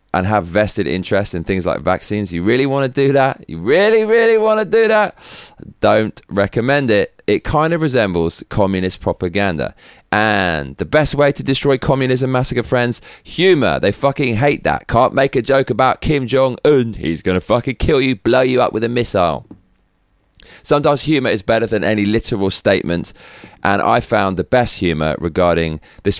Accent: British